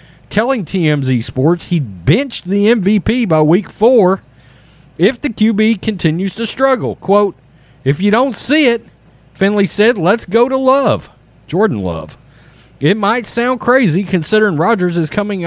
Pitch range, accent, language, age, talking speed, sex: 135-205 Hz, American, English, 40-59, 145 wpm, male